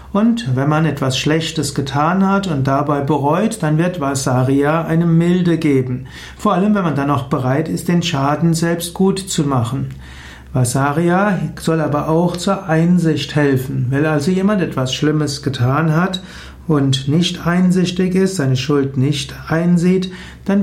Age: 60-79